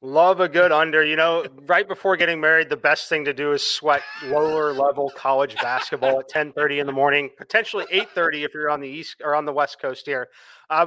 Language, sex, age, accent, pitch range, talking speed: English, male, 30-49, American, 140-170 Hz, 220 wpm